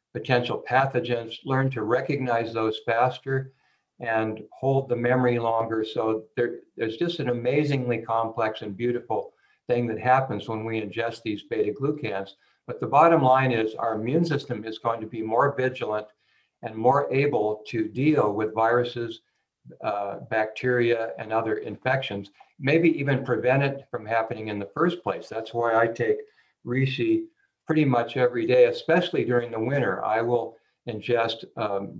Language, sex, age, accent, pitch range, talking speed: English, male, 60-79, American, 110-135 Hz, 150 wpm